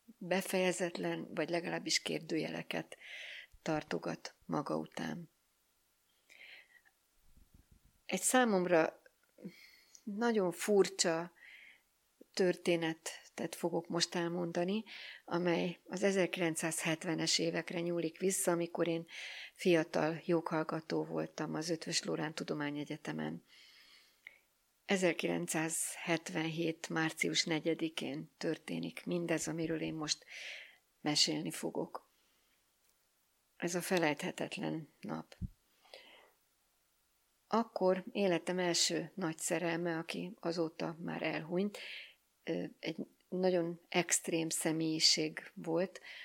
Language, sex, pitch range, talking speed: Hungarian, female, 160-180 Hz, 75 wpm